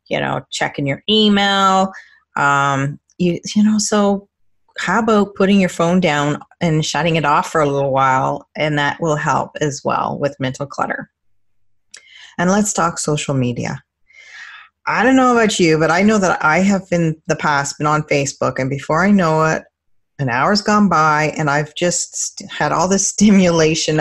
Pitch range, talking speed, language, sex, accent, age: 140-175 Hz, 175 wpm, English, female, American, 30-49